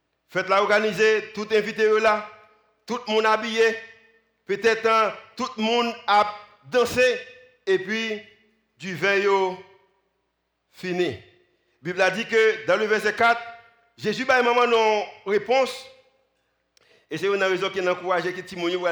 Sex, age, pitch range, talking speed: male, 50-69, 185-225 Hz, 130 wpm